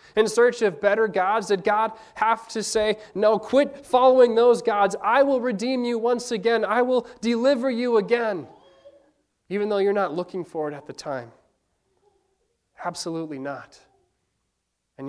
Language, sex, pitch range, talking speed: English, male, 155-205 Hz, 155 wpm